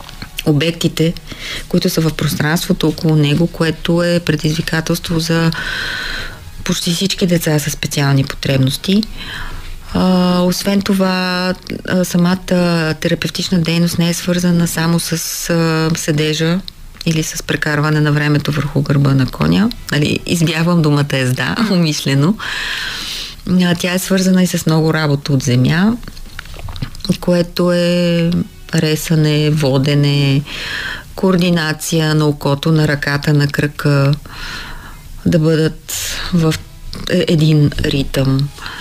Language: Bulgarian